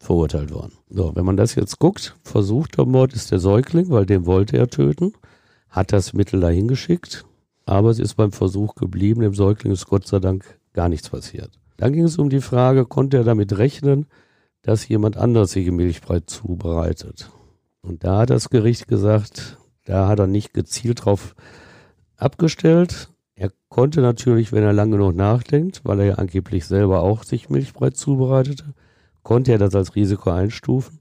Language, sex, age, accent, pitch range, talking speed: German, male, 50-69, German, 95-120 Hz, 175 wpm